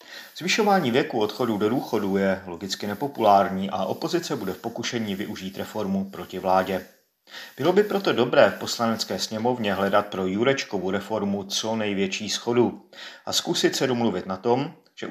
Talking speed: 150 wpm